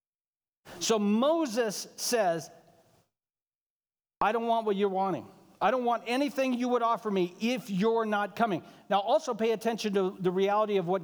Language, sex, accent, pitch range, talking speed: English, male, American, 185-240 Hz, 165 wpm